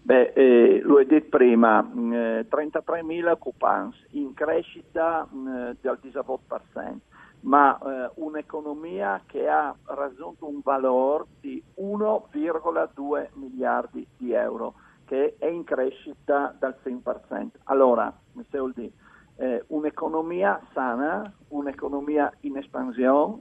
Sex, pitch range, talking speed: male, 130-160 Hz, 105 wpm